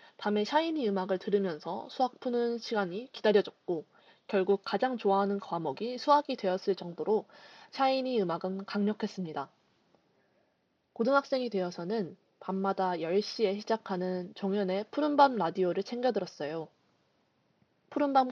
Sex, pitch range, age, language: female, 190-240 Hz, 20-39, Korean